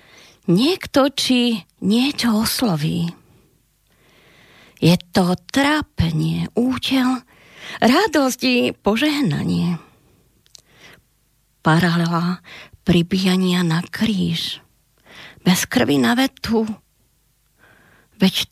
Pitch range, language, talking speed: 170-240 Hz, Slovak, 65 wpm